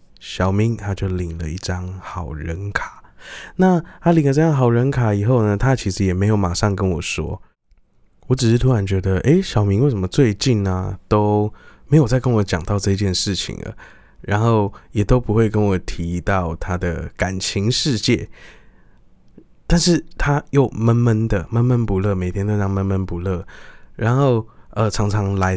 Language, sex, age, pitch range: Chinese, male, 20-39, 95-115 Hz